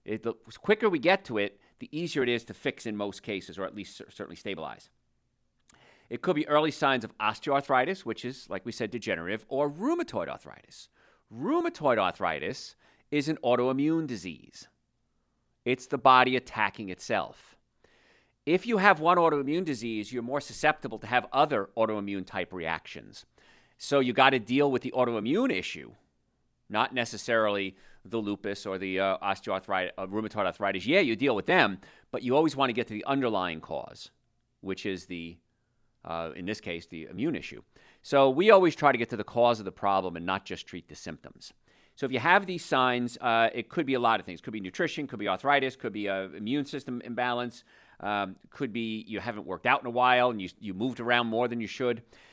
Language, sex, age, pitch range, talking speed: English, male, 40-59, 100-135 Hz, 195 wpm